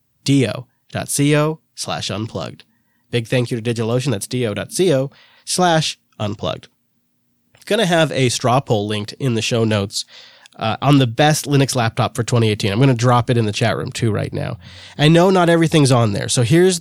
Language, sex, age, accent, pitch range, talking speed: English, male, 30-49, American, 115-145 Hz, 185 wpm